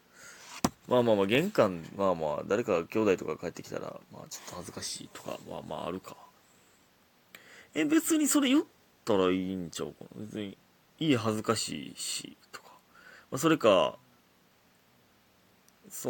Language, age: Japanese, 30-49